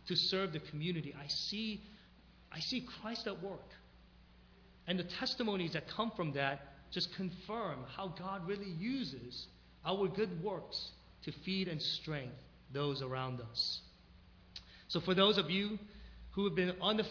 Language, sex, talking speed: English, male, 155 wpm